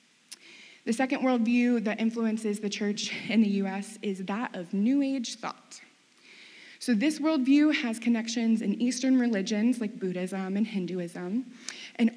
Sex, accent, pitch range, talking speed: female, American, 200-255 Hz, 145 wpm